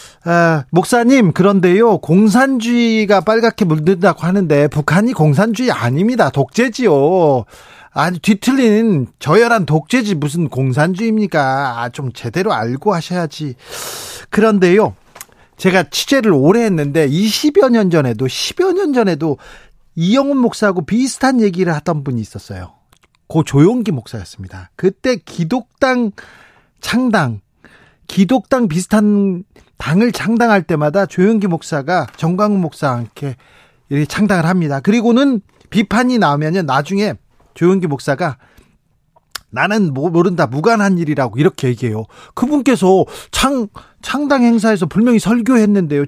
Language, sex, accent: Korean, male, native